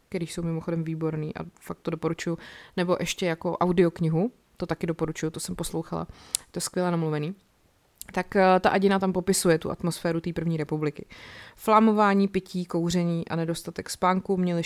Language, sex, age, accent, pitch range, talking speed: Czech, female, 30-49, native, 165-185 Hz, 160 wpm